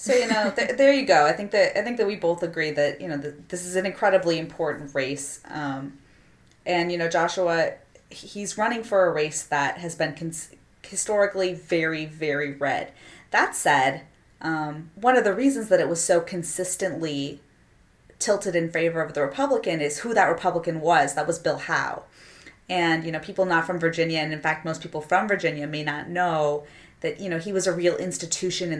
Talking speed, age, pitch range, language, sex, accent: 200 wpm, 30-49, 155-195 Hz, English, female, American